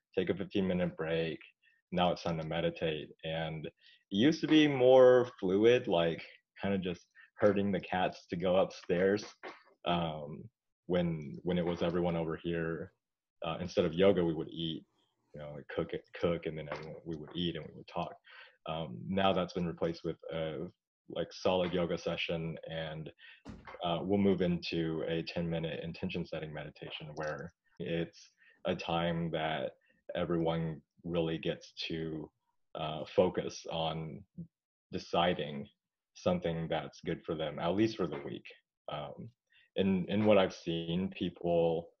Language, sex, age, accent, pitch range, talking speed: English, male, 30-49, American, 80-95 Hz, 150 wpm